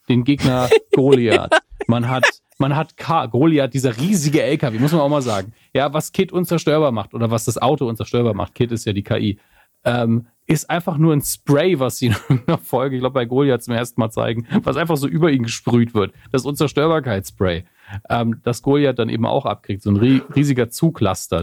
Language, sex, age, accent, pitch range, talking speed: German, male, 40-59, German, 115-155 Hz, 200 wpm